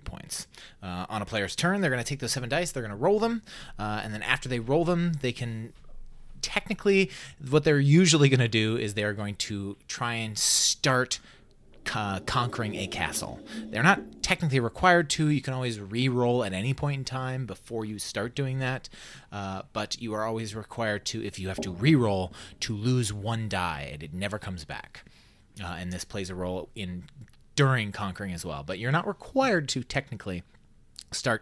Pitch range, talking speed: 100-150 Hz, 195 wpm